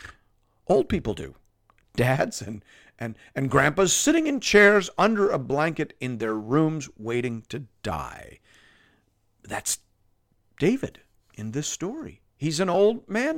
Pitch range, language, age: 110-185 Hz, English, 50-69